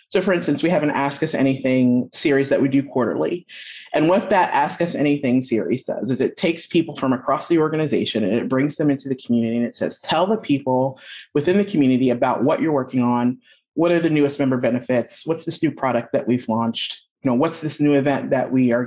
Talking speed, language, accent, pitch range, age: 230 wpm, English, American, 130-165 Hz, 30-49